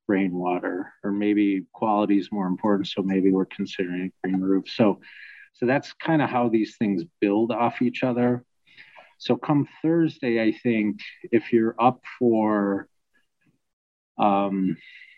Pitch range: 95-110 Hz